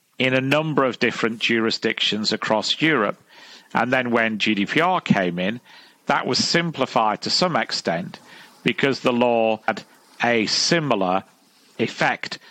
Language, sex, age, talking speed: English, male, 40-59, 130 wpm